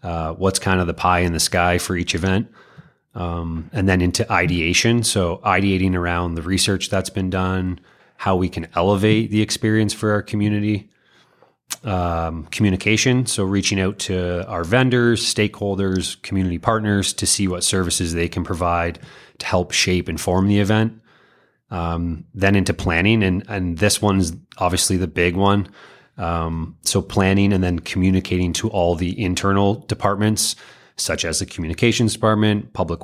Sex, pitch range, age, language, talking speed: male, 90-105 Hz, 30-49, English, 160 wpm